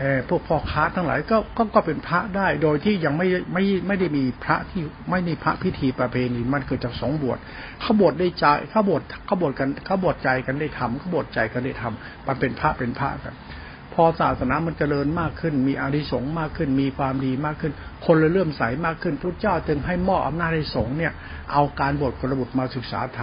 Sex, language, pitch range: male, Thai, 130-170 Hz